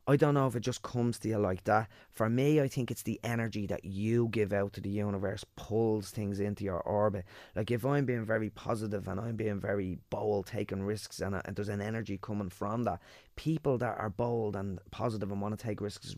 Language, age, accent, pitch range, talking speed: English, 20-39, Irish, 100-120 Hz, 235 wpm